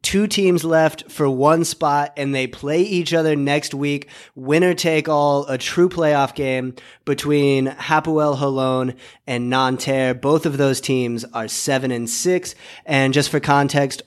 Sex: male